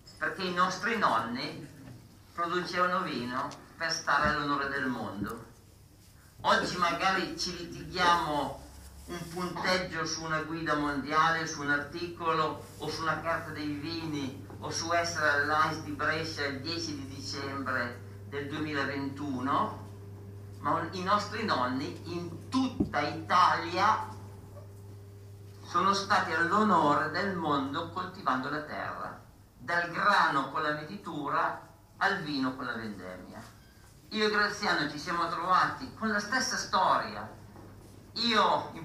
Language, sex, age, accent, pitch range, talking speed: Italian, male, 50-69, native, 110-175 Hz, 120 wpm